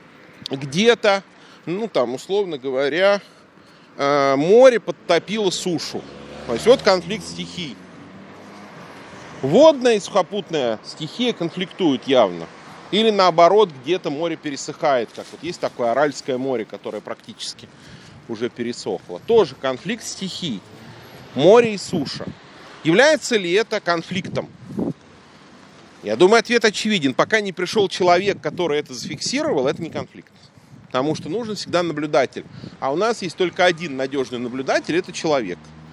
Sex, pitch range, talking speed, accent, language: male, 150-215 Hz, 120 wpm, native, Russian